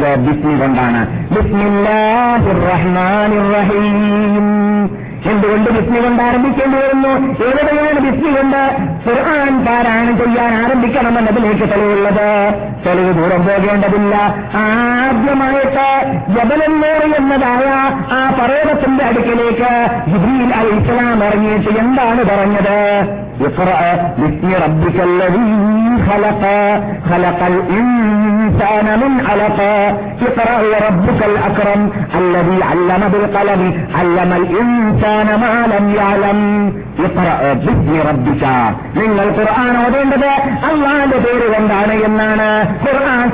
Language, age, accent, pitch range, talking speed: Malayalam, 50-69, native, 205-240 Hz, 55 wpm